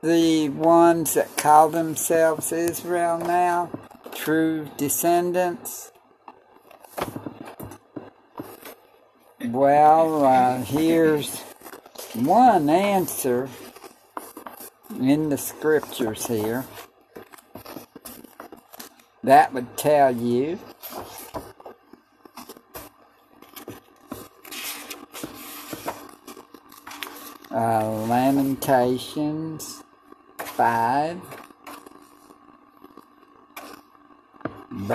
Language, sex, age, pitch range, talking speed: English, male, 60-79, 135-170 Hz, 45 wpm